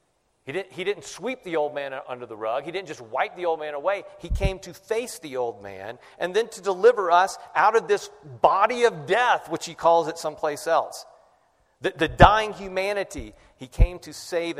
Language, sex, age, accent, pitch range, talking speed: English, male, 40-59, American, 125-185 Hz, 210 wpm